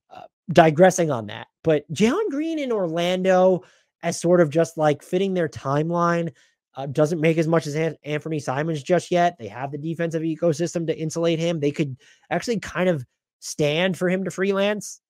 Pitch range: 130-175 Hz